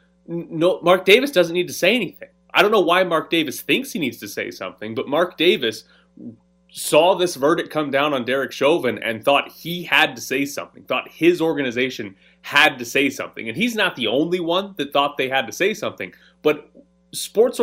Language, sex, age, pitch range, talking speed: English, male, 30-49, 145-195 Hz, 205 wpm